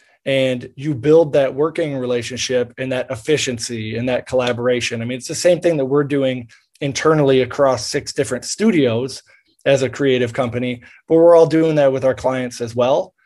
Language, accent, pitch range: English, American, 125-155 Hz